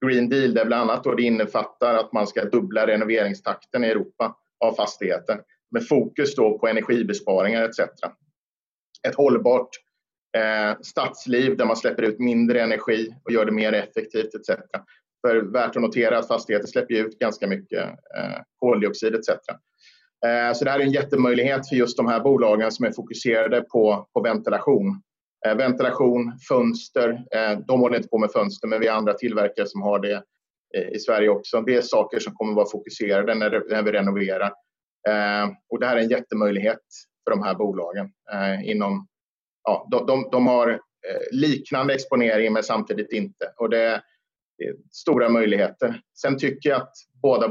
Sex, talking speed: male, 160 wpm